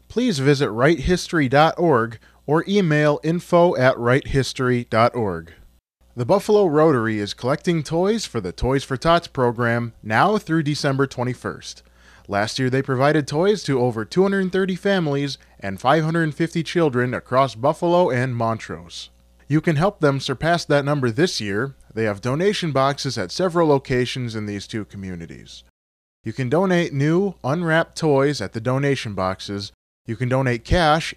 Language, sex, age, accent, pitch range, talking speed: English, male, 30-49, American, 115-165 Hz, 140 wpm